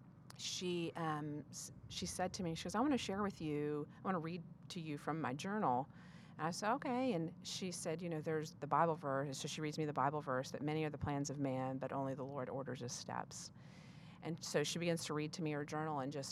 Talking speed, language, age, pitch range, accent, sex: 255 wpm, English, 40-59, 155-180 Hz, American, female